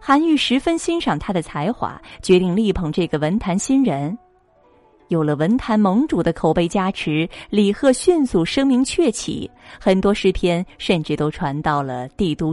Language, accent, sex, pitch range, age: Chinese, native, female, 170-270 Hz, 30-49